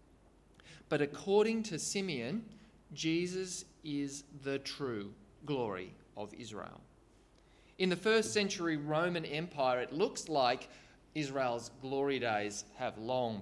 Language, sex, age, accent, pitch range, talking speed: English, male, 20-39, Australian, 130-165 Hz, 110 wpm